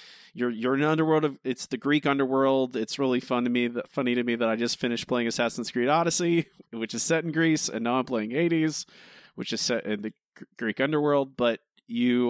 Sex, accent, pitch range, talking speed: male, American, 110-145 Hz, 215 wpm